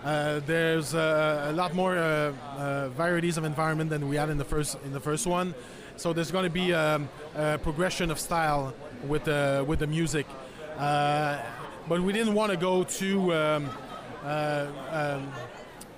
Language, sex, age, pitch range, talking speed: English, male, 20-39, 150-180 Hz, 175 wpm